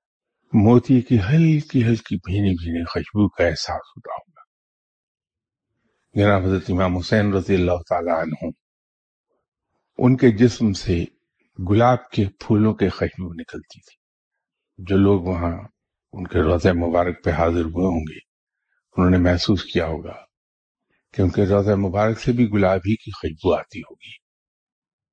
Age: 50-69